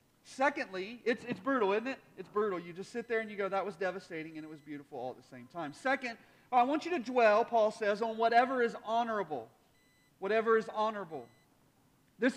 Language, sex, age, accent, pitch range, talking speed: English, male, 40-59, American, 195-250 Hz, 210 wpm